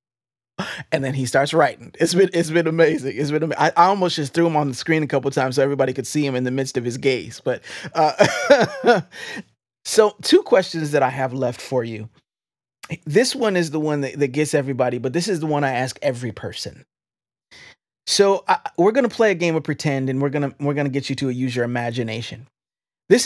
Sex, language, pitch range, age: male, English, 125-165 Hz, 30-49